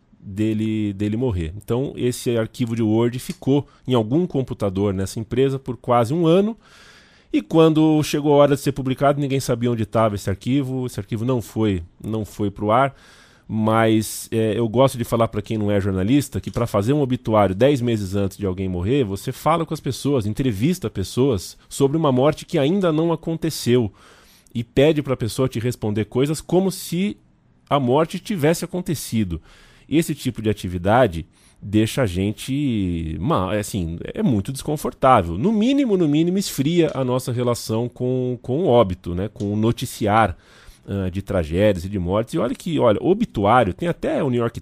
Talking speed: 180 wpm